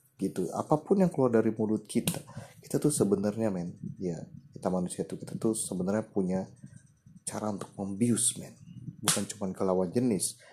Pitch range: 100-125 Hz